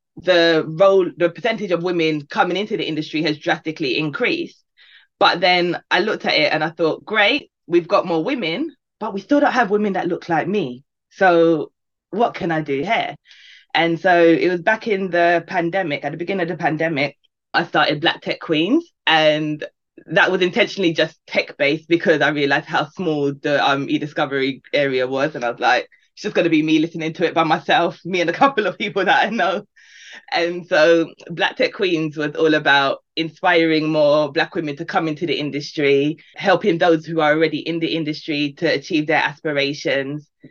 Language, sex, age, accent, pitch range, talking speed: English, female, 20-39, British, 150-180 Hz, 195 wpm